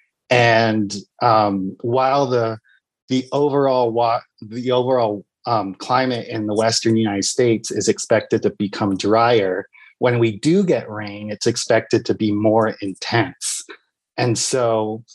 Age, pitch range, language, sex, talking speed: 30-49, 105-125 Hz, English, male, 135 wpm